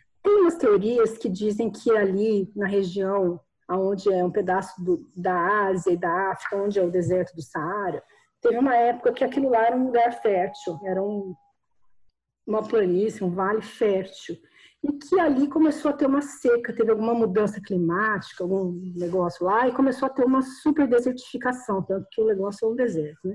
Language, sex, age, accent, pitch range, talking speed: Portuguese, female, 40-59, Brazilian, 195-260 Hz, 175 wpm